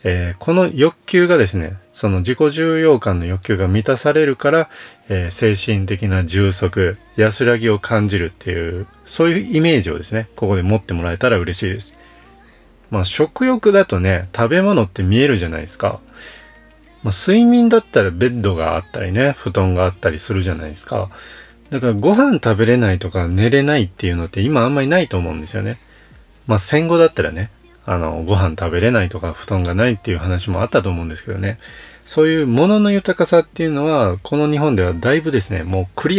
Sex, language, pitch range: male, Japanese, 95-145 Hz